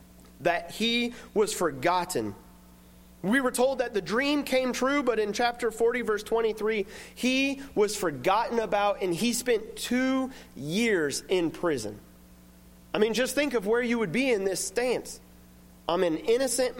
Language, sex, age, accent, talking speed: English, male, 30-49, American, 155 wpm